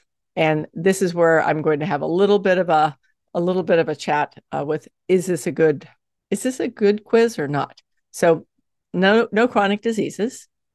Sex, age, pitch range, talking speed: female, 50-69, 155-205 Hz, 205 wpm